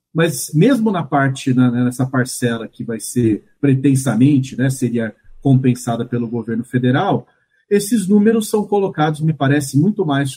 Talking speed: 140 wpm